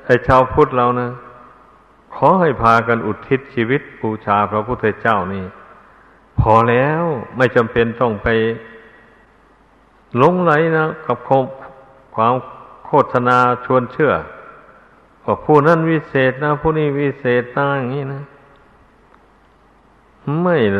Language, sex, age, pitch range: Thai, male, 60-79, 110-135 Hz